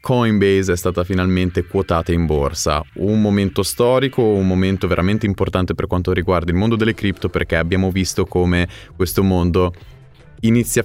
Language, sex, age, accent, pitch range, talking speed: Italian, male, 20-39, native, 85-100 Hz, 155 wpm